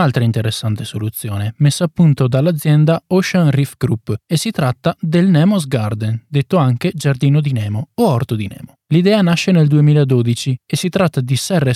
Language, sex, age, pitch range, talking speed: Italian, male, 20-39, 130-170 Hz, 175 wpm